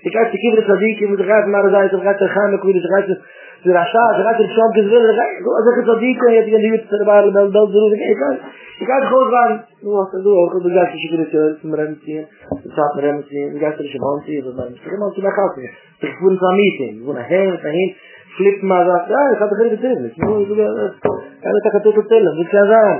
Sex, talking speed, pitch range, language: male, 95 wpm, 155-215 Hz, English